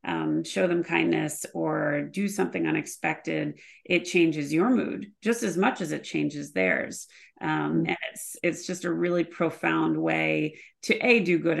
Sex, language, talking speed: female, English, 160 wpm